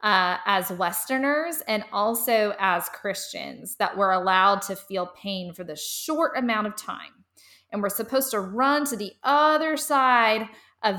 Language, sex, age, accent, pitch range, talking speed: English, female, 20-39, American, 185-240 Hz, 160 wpm